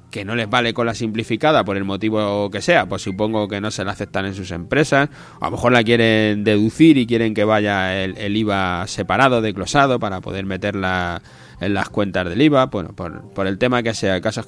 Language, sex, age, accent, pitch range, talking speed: Spanish, male, 20-39, Spanish, 105-135 Hz, 225 wpm